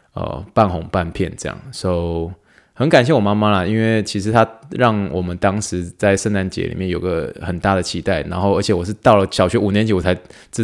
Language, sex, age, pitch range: Chinese, male, 20-39, 90-110 Hz